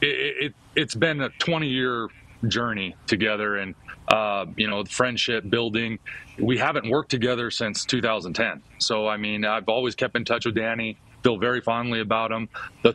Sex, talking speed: male, 165 wpm